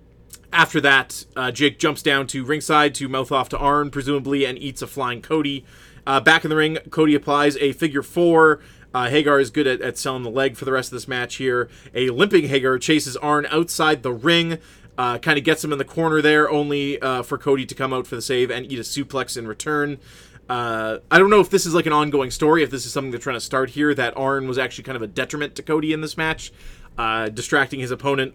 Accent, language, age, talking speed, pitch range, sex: American, English, 30-49, 240 wpm, 125-160 Hz, male